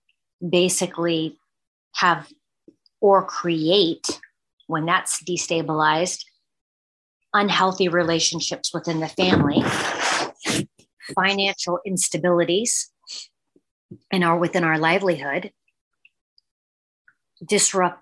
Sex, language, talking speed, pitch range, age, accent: female, English, 65 wpm, 160-190 Hz, 40-59, American